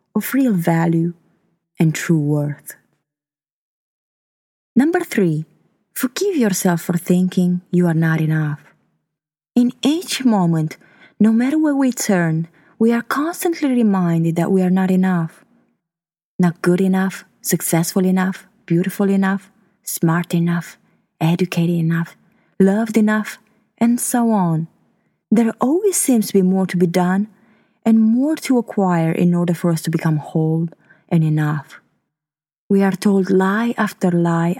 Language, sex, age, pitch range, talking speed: English, female, 20-39, 165-220 Hz, 135 wpm